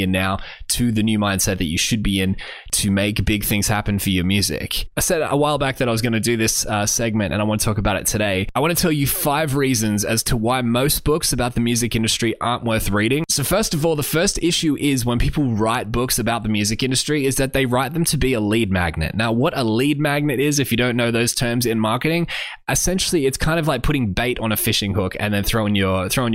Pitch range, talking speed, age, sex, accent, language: 105-125 Hz, 260 wpm, 20-39, male, Australian, English